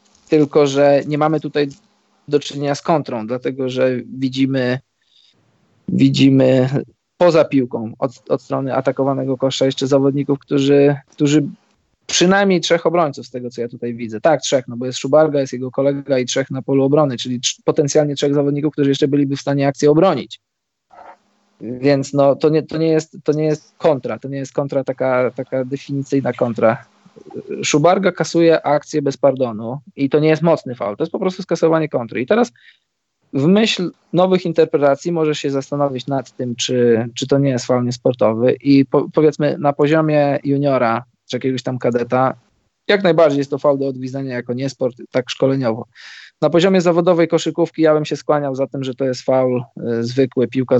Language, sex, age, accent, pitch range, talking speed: Polish, male, 20-39, native, 130-155 Hz, 180 wpm